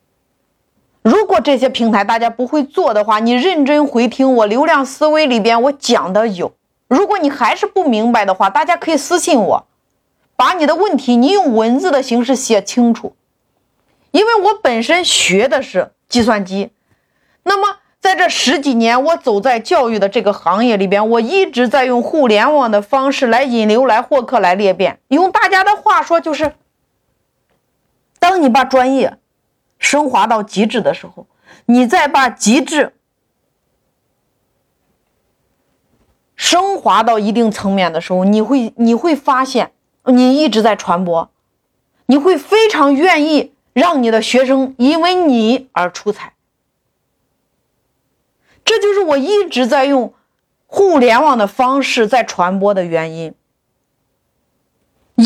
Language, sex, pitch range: Chinese, female, 225-300 Hz